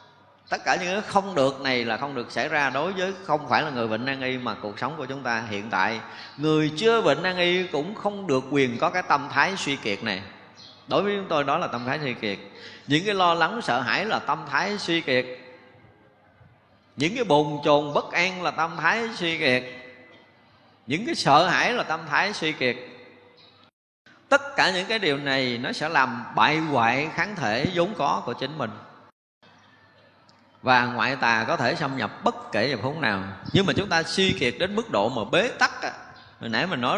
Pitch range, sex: 115-165 Hz, male